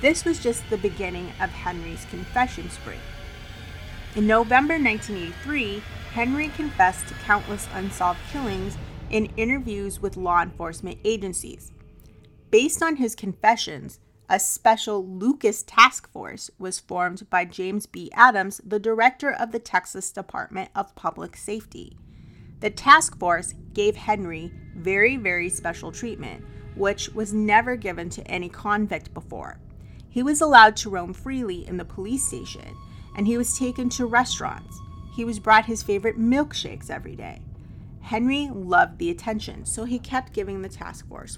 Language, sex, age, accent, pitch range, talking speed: English, female, 30-49, American, 180-245 Hz, 145 wpm